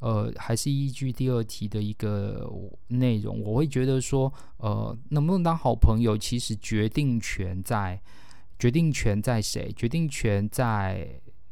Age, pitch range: 20-39, 100-130 Hz